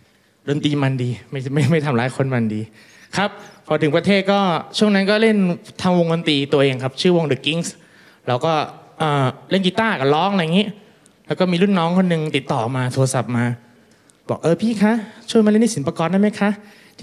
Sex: male